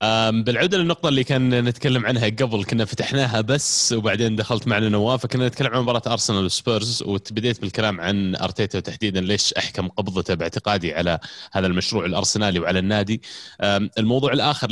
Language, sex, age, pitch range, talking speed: Arabic, male, 20-39, 95-115 Hz, 150 wpm